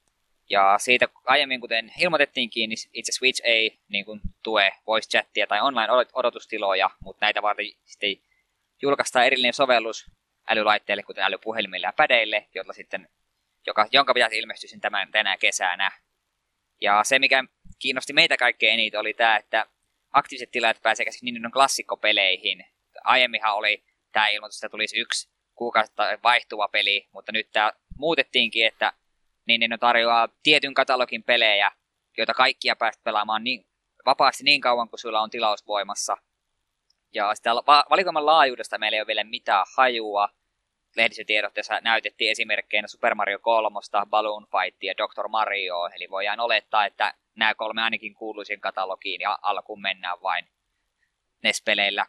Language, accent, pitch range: Finnish, native, 105-120 Hz